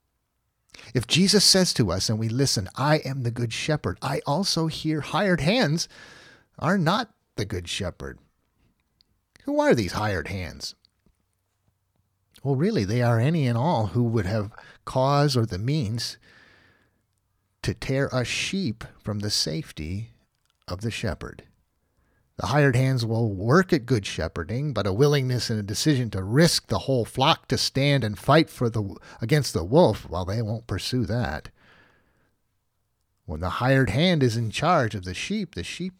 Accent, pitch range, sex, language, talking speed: American, 95-135 Hz, male, English, 160 wpm